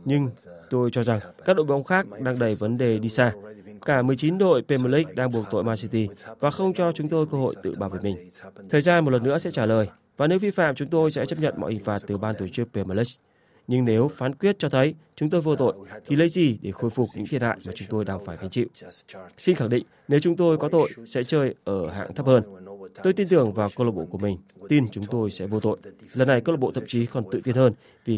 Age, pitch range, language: 20-39, 110-150 Hz, Vietnamese